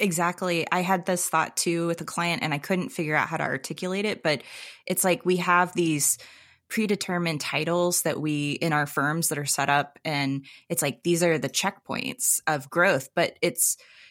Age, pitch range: 20-39, 150-180 Hz